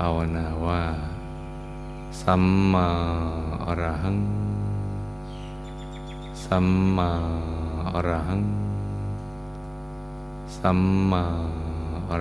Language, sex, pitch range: Thai, male, 80-90 Hz